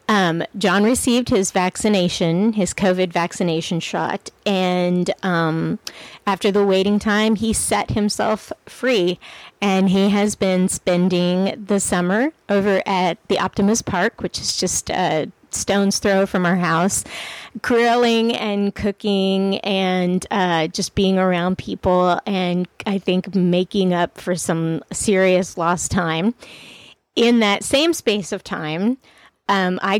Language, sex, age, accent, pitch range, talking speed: English, female, 30-49, American, 180-205 Hz, 135 wpm